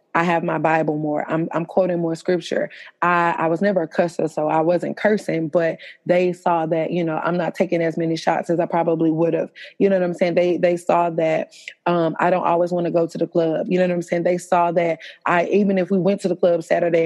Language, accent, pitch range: English, American, 170-195 Hz